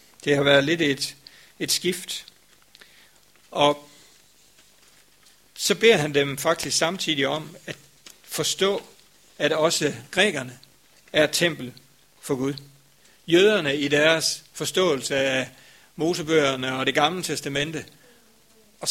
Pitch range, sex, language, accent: 140-175 Hz, male, Danish, native